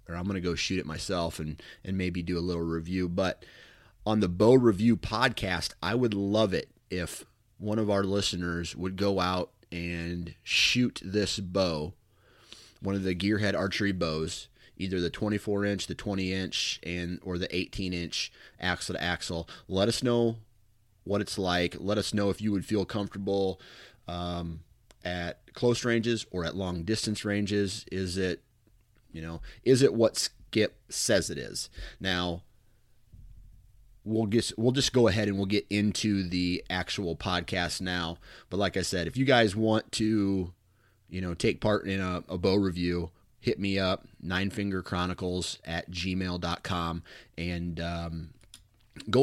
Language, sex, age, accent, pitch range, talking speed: English, male, 30-49, American, 90-105 Hz, 165 wpm